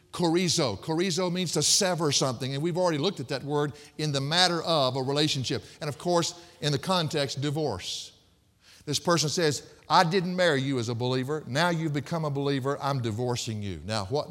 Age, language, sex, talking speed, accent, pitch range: 50-69, English, male, 195 wpm, American, 125-170 Hz